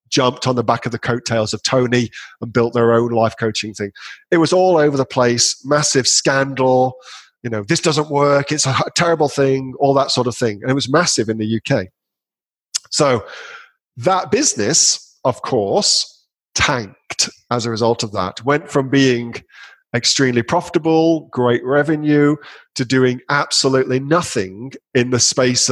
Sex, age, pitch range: male, 40-59, 120-150 Hz